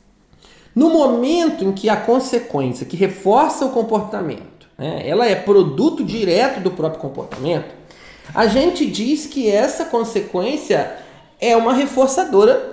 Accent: Brazilian